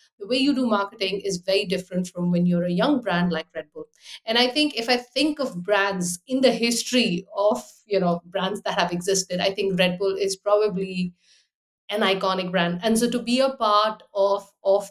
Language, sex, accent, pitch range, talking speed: English, female, Indian, 190-240 Hz, 210 wpm